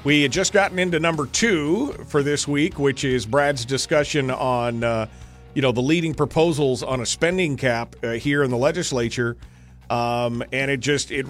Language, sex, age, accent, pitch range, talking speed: English, male, 40-59, American, 115-145 Hz, 185 wpm